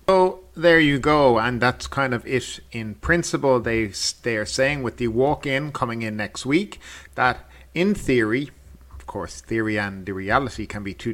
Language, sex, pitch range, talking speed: English, male, 110-135 Hz, 185 wpm